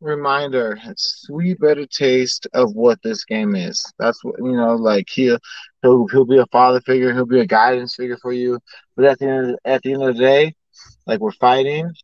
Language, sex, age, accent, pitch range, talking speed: English, male, 20-39, American, 125-160 Hz, 210 wpm